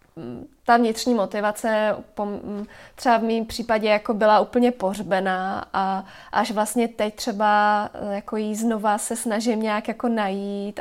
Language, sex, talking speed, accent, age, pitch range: Czech, female, 135 wpm, native, 20-39, 210-240 Hz